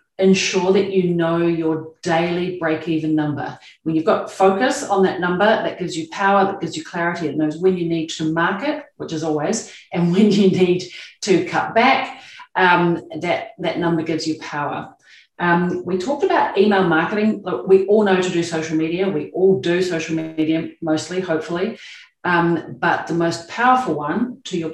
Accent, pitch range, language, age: Australian, 160-190 Hz, English, 40-59